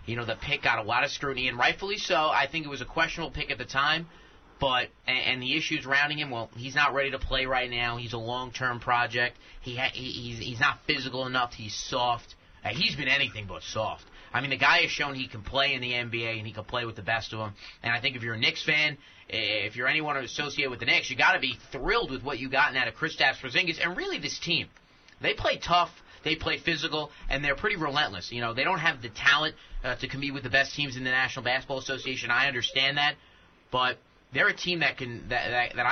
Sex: male